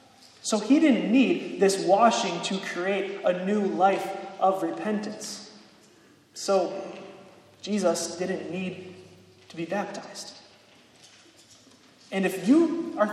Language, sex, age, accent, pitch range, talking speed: English, male, 20-39, American, 180-240 Hz, 110 wpm